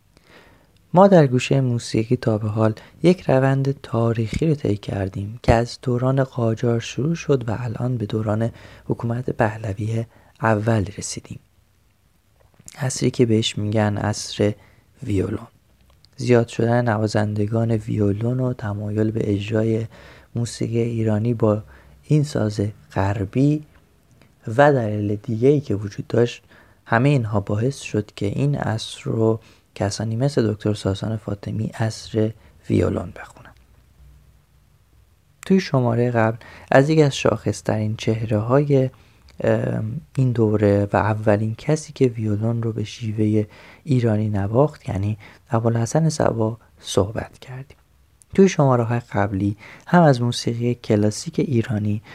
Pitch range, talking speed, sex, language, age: 105-125 Hz, 120 wpm, male, Persian, 30-49